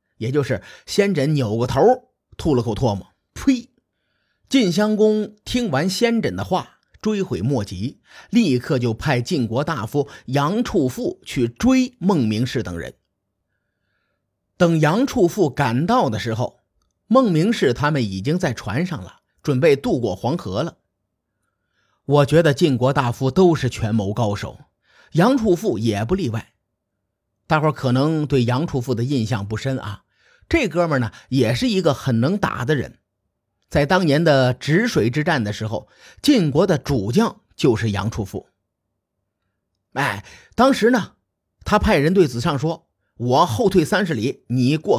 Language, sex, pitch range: Chinese, male, 115-185 Hz